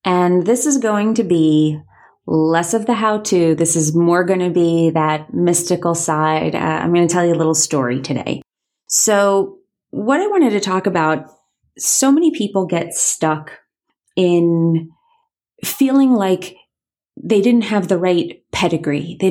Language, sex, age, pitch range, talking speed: English, female, 30-49, 165-205 Hz, 160 wpm